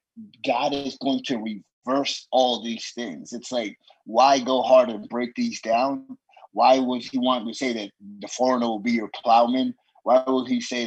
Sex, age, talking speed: male, 30-49, 190 wpm